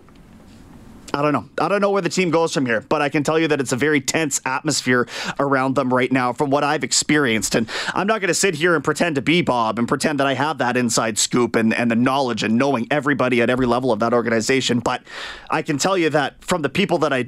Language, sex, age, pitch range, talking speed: English, male, 30-49, 125-165 Hz, 260 wpm